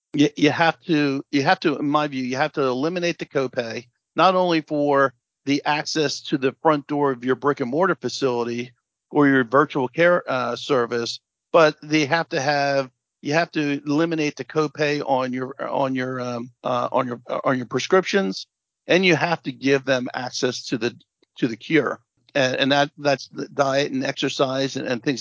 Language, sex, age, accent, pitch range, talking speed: English, male, 50-69, American, 130-155 Hz, 195 wpm